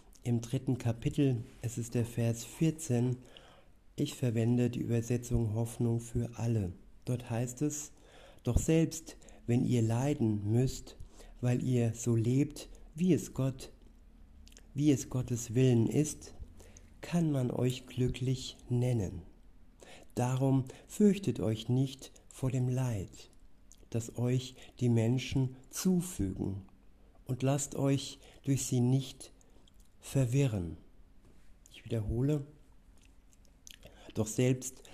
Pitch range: 105-130 Hz